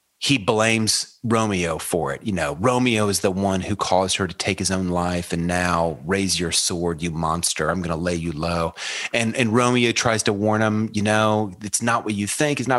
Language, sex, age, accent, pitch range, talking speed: English, male, 30-49, American, 95-120 Hz, 225 wpm